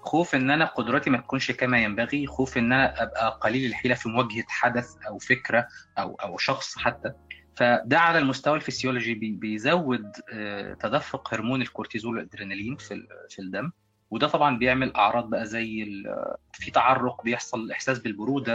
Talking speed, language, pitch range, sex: 145 wpm, Arabic, 110-130 Hz, male